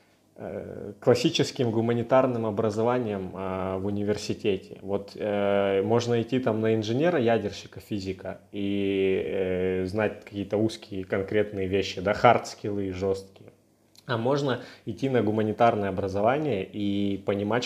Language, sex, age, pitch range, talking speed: Russian, male, 20-39, 95-115 Hz, 115 wpm